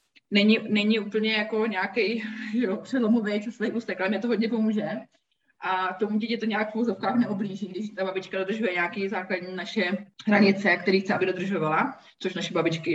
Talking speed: 180 wpm